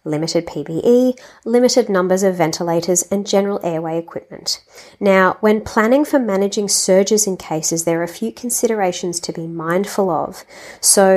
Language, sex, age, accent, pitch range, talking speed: English, female, 30-49, Australian, 175-205 Hz, 150 wpm